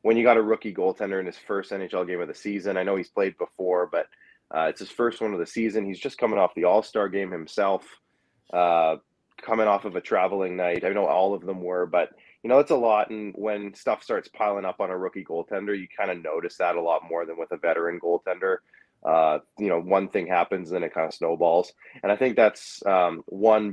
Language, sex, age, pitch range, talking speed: English, male, 20-39, 85-115 Hz, 245 wpm